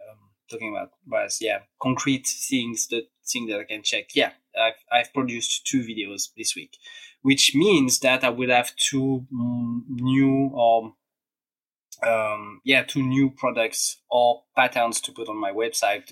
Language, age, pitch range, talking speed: English, 20-39, 115-150 Hz, 155 wpm